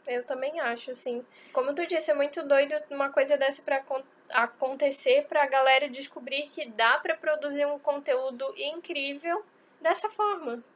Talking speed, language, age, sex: 150 wpm, Portuguese, 10-29, female